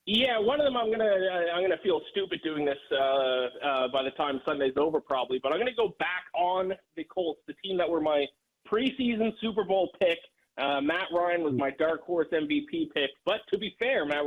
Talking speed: 220 wpm